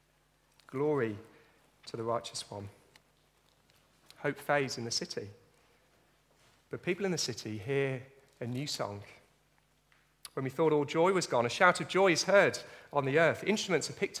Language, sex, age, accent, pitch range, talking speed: English, male, 40-59, British, 130-170 Hz, 160 wpm